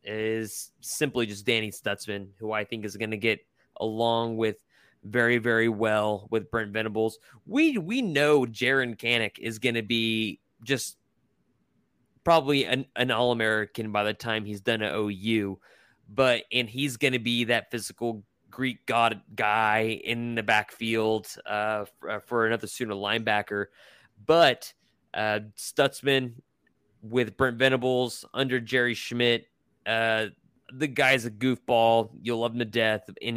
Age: 20-39